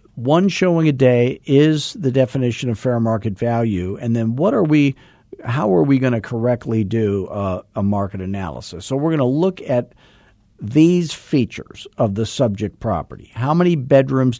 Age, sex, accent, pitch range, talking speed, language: 50-69, male, American, 100-120 Hz, 180 wpm, English